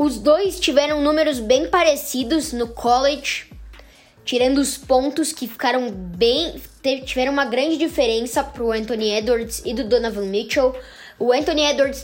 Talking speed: 140 wpm